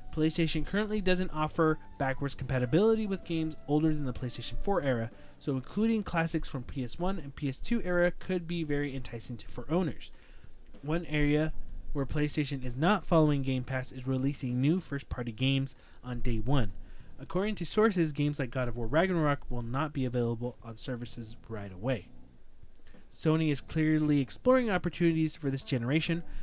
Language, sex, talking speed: English, male, 160 wpm